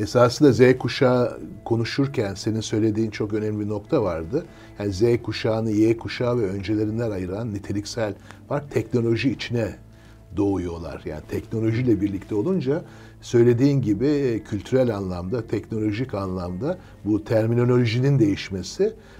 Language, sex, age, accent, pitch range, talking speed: Turkish, male, 60-79, native, 105-125 Hz, 120 wpm